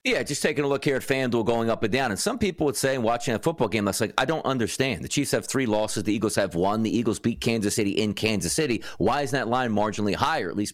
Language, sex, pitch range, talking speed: English, male, 105-145 Hz, 285 wpm